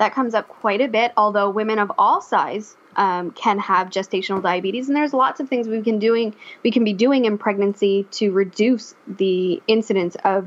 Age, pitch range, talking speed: 10-29, 195-230 Hz, 200 wpm